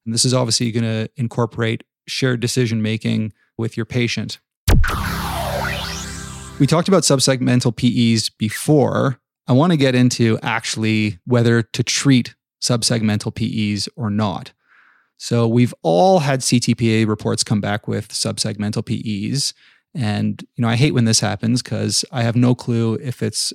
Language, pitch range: English, 110-125 Hz